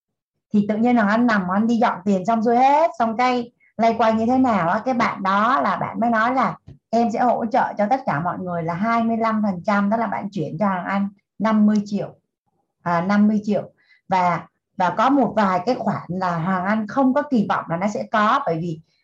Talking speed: 235 wpm